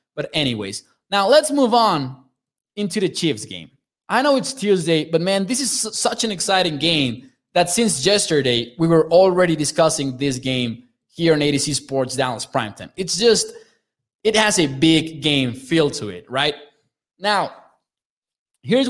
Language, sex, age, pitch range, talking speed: English, male, 20-39, 150-215 Hz, 160 wpm